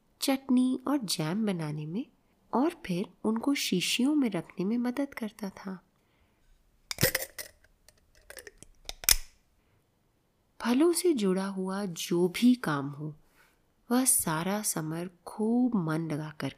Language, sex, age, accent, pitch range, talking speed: Hindi, female, 30-49, native, 160-230 Hz, 105 wpm